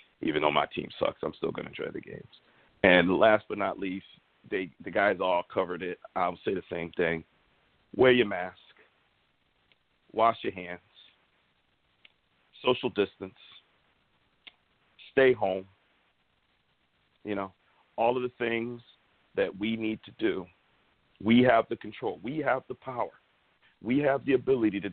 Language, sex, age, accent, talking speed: English, male, 50-69, American, 150 wpm